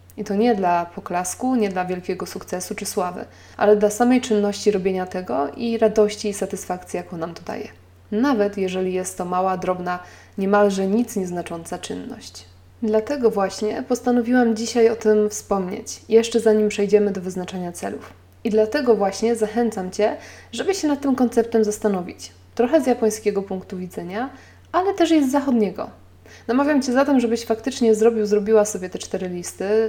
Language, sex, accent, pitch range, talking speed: Polish, female, native, 185-230 Hz, 160 wpm